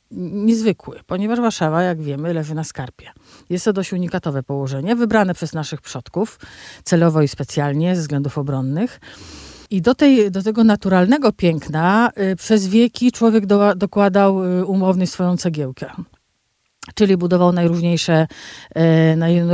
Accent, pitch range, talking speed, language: native, 160-205 Hz, 140 wpm, Polish